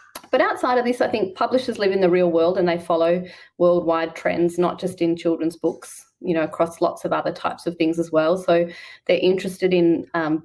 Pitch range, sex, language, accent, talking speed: 165-195 Hz, female, English, Australian, 220 wpm